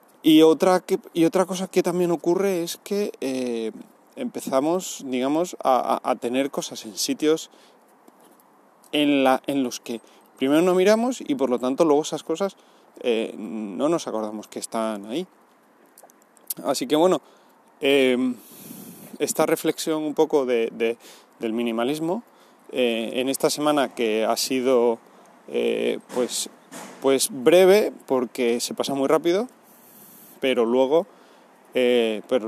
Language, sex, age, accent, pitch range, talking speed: Spanish, male, 30-49, Spanish, 120-160 Hz, 135 wpm